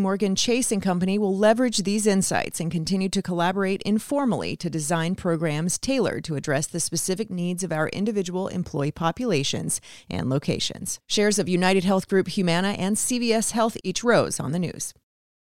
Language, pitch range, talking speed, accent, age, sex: English, 170-220 Hz, 165 wpm, American, 30-49, female